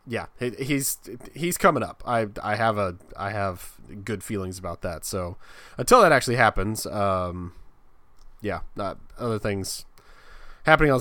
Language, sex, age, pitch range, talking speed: English, male, 20-39, 100-120 Hz, 145 wpm